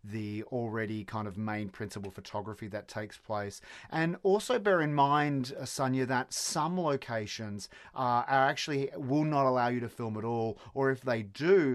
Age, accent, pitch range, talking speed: 30-49, Australian, 110-135 Hz, 175 wpm